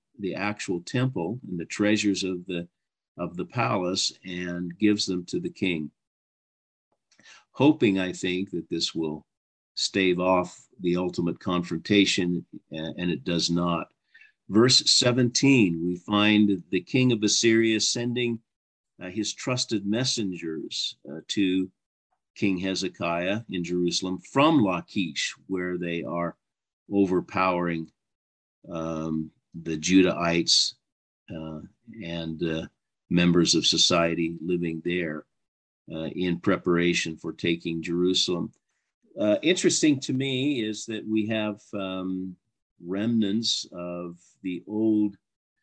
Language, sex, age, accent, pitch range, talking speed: English, male, 50-69, American, 85-105 Hz, 115 wpm